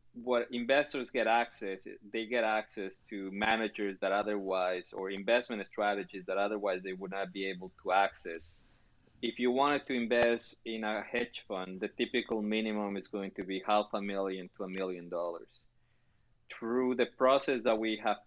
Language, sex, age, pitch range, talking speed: English, male, 20-39, 95-115 Hz, 170 wpm